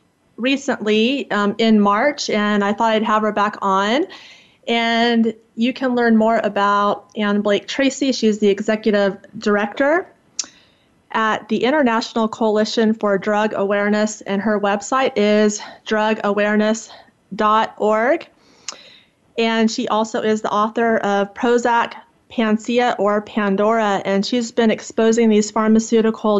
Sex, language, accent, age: female, English, American, 30-49